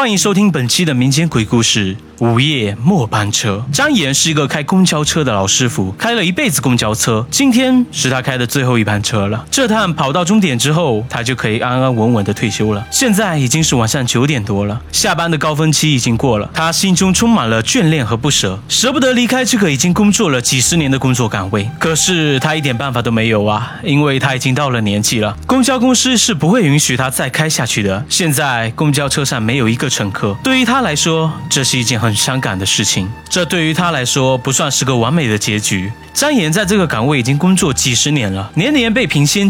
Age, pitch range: 20-39, 120-185 Hz